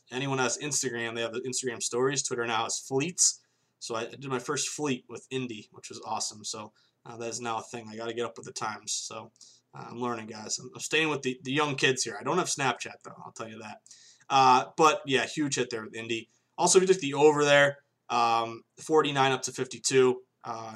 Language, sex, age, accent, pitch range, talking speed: English, male, 20-39, American, 120-145 Hz, 230 wpm